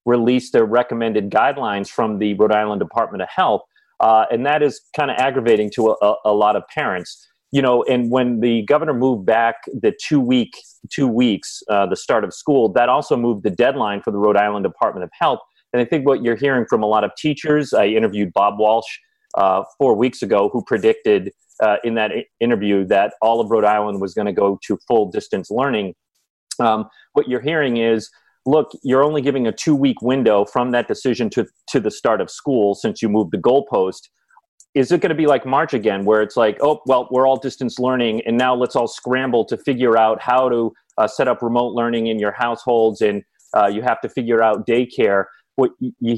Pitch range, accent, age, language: 110-130 Hz, American, 30-49, English